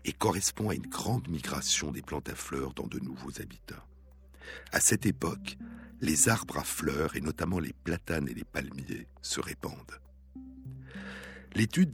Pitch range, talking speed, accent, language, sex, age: 65-105 Hz, 155 wpm, French, French, male, 60-79